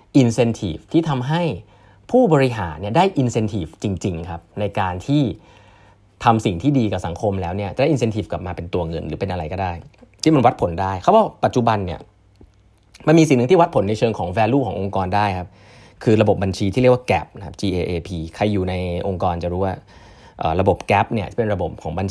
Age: 30-49